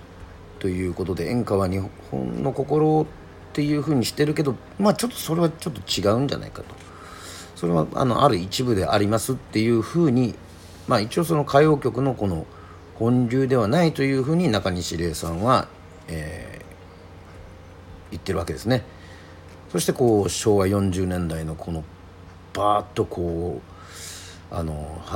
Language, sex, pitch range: Japanese, male, 85-100 Hz